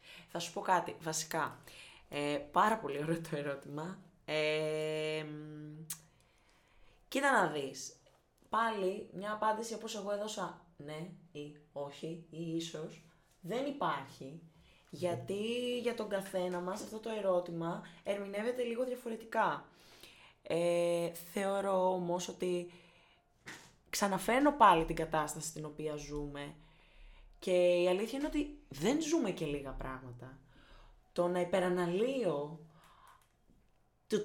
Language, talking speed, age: Greek, 105 wpm, 20-39